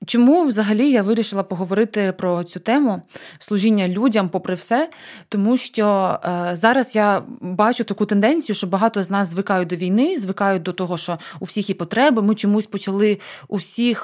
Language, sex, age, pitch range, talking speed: Ukrainian, female, 20-39, 180-210 Hz, 165 wpm